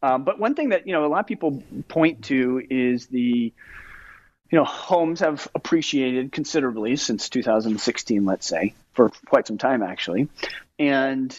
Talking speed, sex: 165 wpm, male